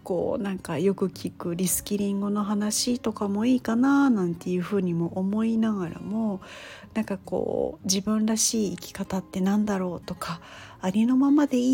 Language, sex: Japanese, female